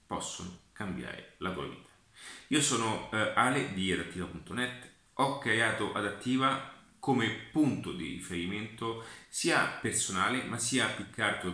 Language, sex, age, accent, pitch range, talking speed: Italian, male, 30-49, native, 90-125 Hz, 115 wpm